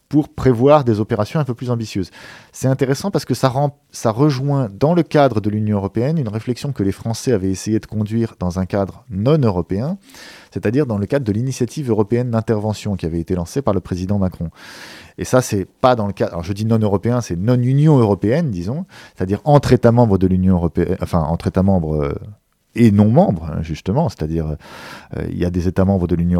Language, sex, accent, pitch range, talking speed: French, male, French, 95-130 Hz, 205 wpm